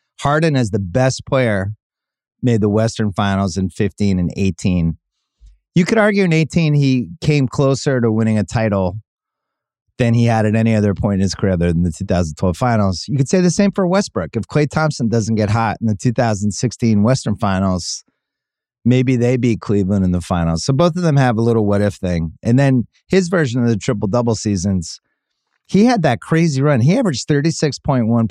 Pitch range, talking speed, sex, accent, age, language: 100-135 Hz, 190 wpm, male, American, 30-49, English